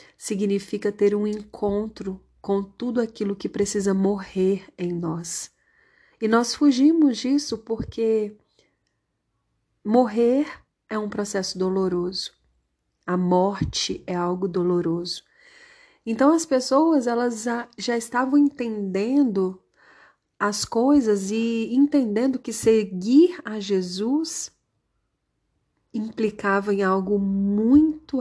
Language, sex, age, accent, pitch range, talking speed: Portuguese, female, 40-59, Brazilian, 190-235 Hz, 95 wpm